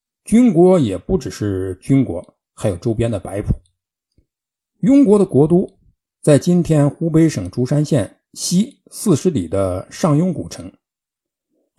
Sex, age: male, 60-79